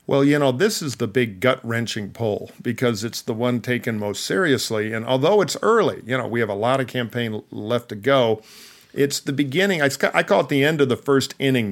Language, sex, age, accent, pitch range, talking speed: English, male, 50-69, American, 110-135 Hz, 220 wpm